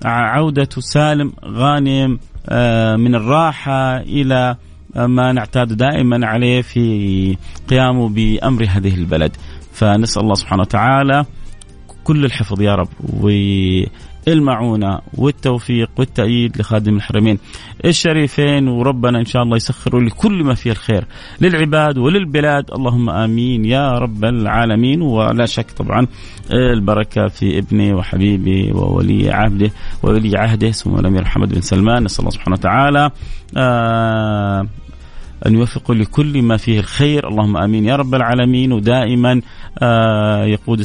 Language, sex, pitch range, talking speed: Arabic, male, 100-130 Hz, 115 wpm